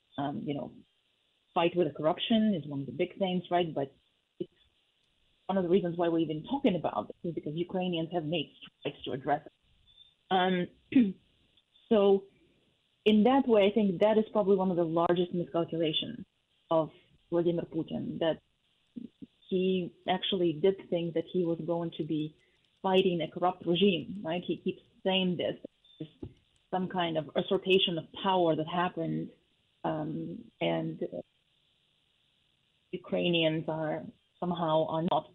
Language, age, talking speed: English, 30-49, 155 wpm